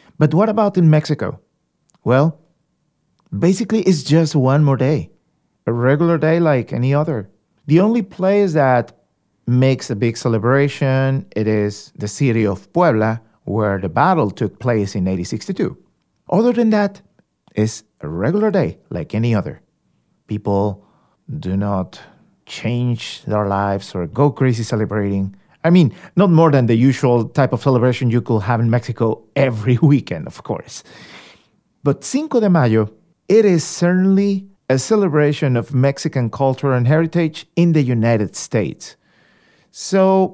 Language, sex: English, male